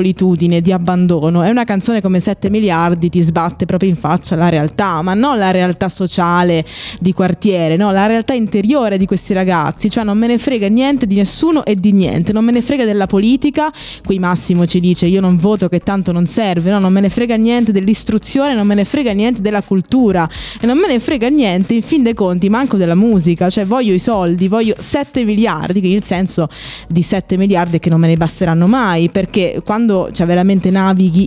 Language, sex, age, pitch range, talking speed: Italian, female, 20-39, 180-220 Hz, 205 wpm